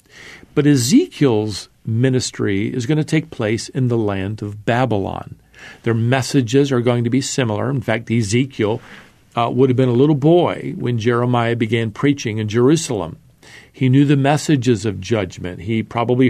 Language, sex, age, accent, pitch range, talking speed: English, male, 50-69, American, 115-140 Hz, 160 wpm